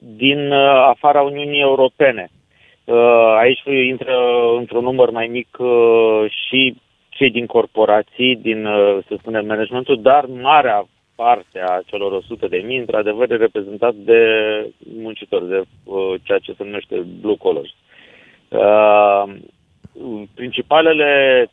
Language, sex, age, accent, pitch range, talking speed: Romanian, male, 30-49, native, 105-135 Hz, 130 wpm